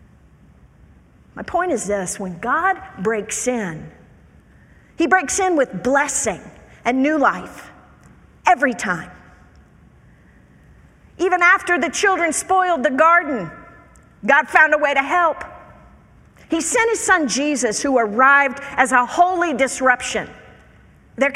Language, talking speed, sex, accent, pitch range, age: English, 120 wpm, female, American, 230-320 Hz, 50-69